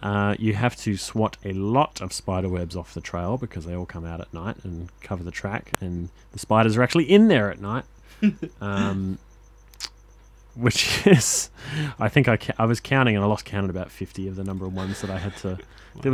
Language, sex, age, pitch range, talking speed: English, male, 20-39, 95-115 Hz, 225 wpm